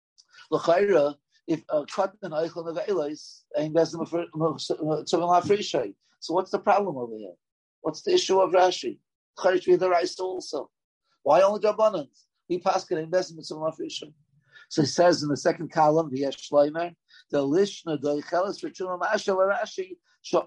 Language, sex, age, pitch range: English, male, 50-69, 155-210 Hz